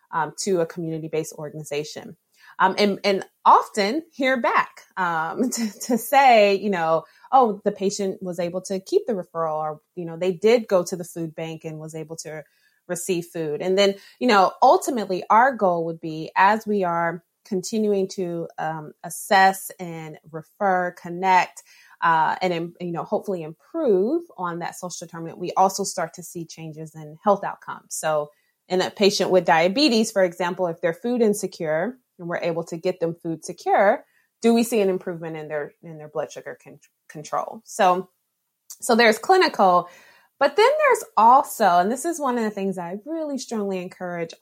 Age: 20-39